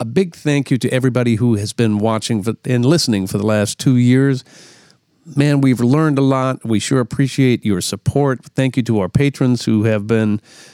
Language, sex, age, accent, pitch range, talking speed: English, male, 50-69, American, 110-135 Hz, 195 wpm